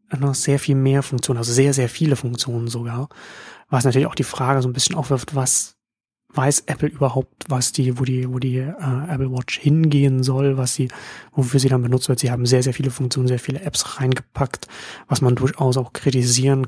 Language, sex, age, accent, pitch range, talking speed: German, male, 30-49, German, 125-145 Hz, 200 wpm